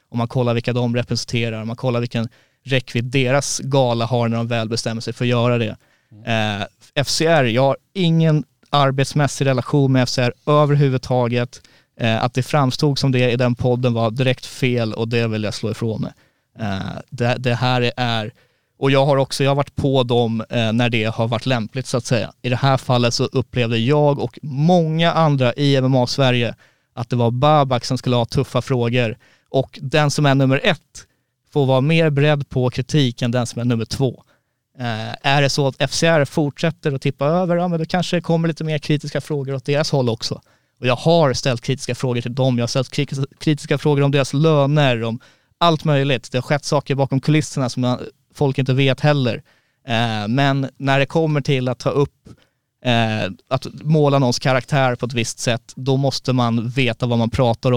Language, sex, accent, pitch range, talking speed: Swedish, male, native, 120-140 Hz, 200 wpm